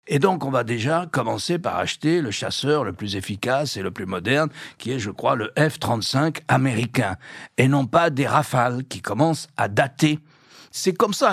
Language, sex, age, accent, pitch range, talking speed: French, male, 60-79, French, 115-165 Hz, 190 wpm